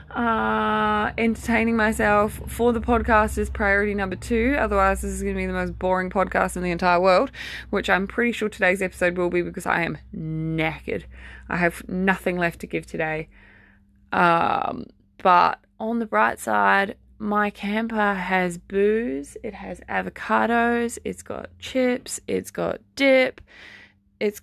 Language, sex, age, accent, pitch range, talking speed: English, female, 20-39, Australian, 180-240 Hz, 155 wpm